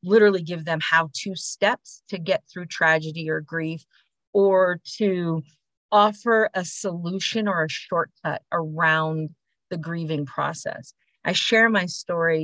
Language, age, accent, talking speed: English, 40-59, American, 130 wpm